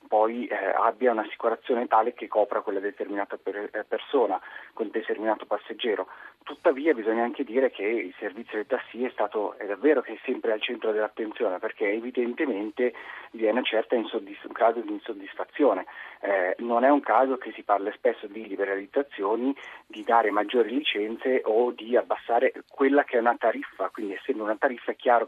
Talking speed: 170 wpm